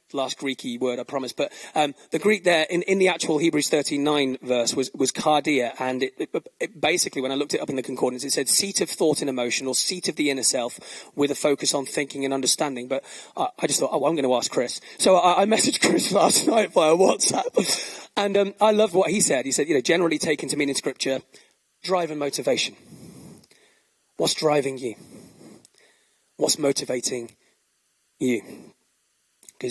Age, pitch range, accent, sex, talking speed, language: 30-49, 145-200 Hz, British, male, 200 wpm, English